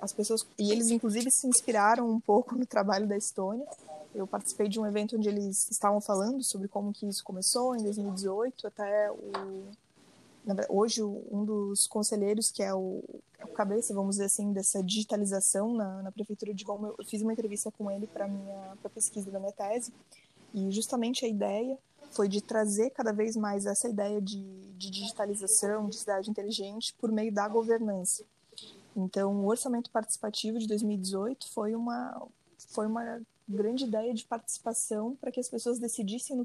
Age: 20-39